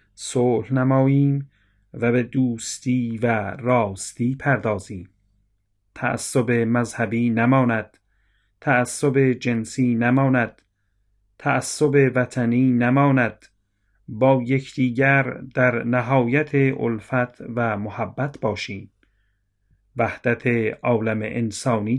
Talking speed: 75 wpm